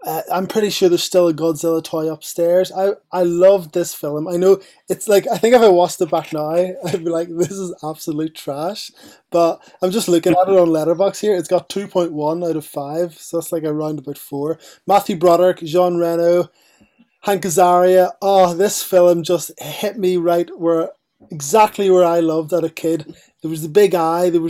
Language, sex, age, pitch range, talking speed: English, male, 20-39, 160-185 Hz, 205 wpm